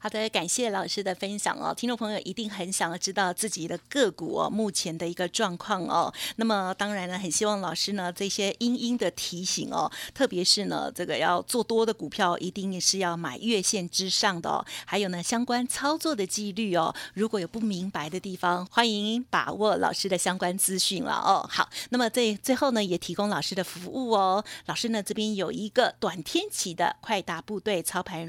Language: Chinese